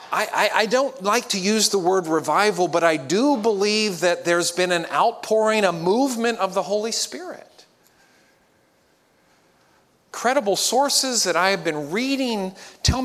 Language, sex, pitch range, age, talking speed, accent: English, male, 180-250 Hz, 40-59, 145 wpm, American